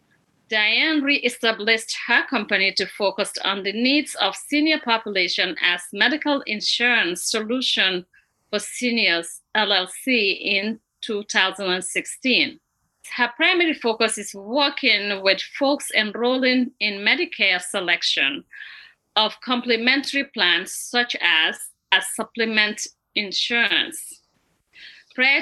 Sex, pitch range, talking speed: female, 200-265 Hz, 95 wpm